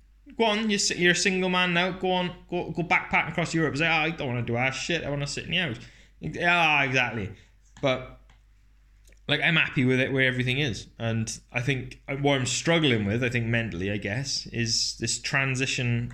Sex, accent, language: male, British, English